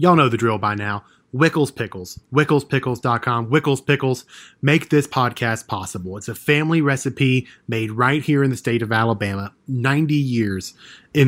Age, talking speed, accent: 20-39, 160 wpm, American